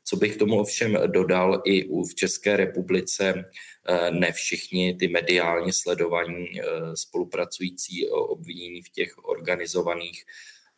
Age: 20-39